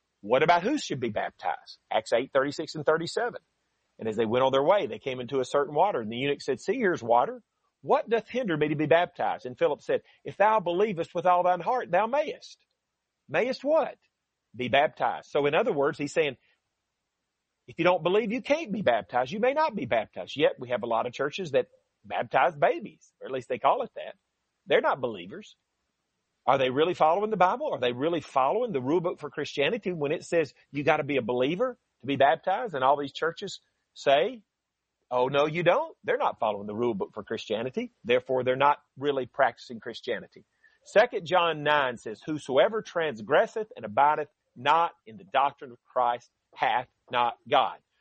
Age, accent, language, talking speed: 40-59, American, English, 200 wpm